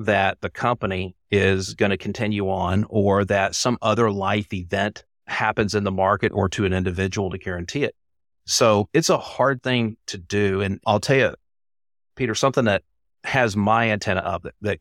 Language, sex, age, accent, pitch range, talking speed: English, male, 30-49, American, 95-115 Hz, 175 wpm